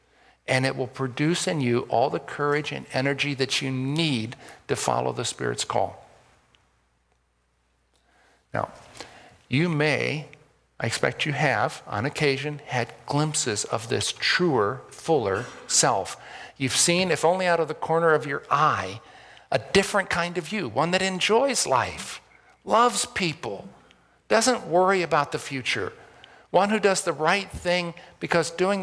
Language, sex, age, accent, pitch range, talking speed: English, male, 50-69, American, 125-175 Hz, 145 wpm